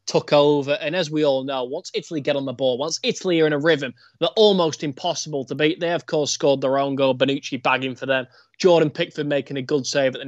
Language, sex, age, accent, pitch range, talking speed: English, male, 20-39, British, 135-160 Hz, 250 wpm